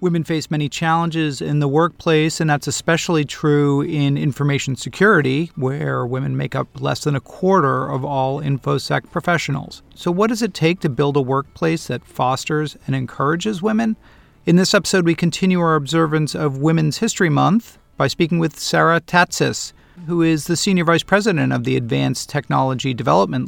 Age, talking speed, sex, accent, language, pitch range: 40-59, 170 wpm, male, American, English, 135-160 Hz